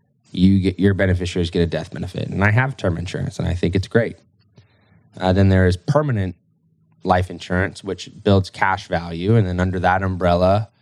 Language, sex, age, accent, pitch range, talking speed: English, male, 10-29, American, 90-105 Hz, 190 wpm